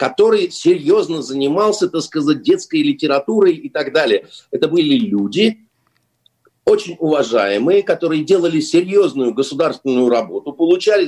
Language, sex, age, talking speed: Russian, male, 50-69, 115 wpm